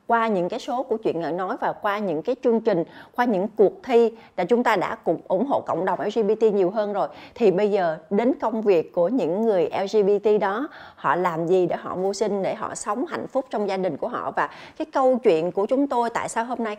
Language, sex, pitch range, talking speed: Vietnamese, female, 200-260 Hz, 250 wpm